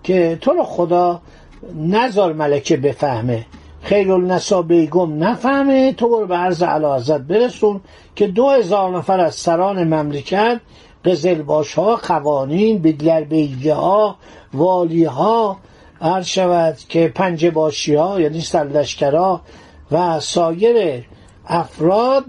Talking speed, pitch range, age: 115 wpm, 155-210 Hz, 60-79